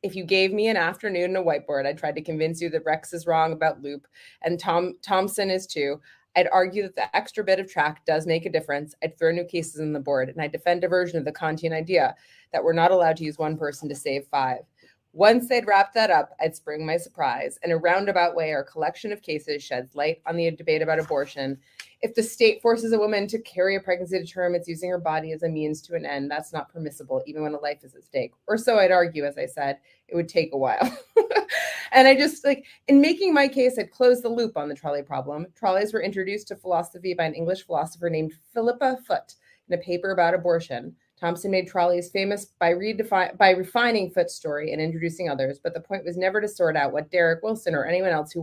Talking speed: 240 wpm